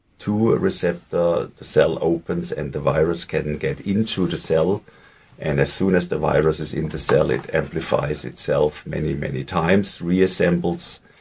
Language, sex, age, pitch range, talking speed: English, male, 50-69, 85-115 Hz, 165 wpm